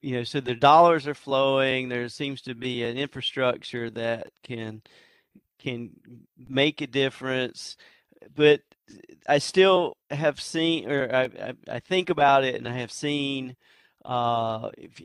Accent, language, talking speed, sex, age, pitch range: American, English, 140 wpm, male, 40-59, 120-140 Hz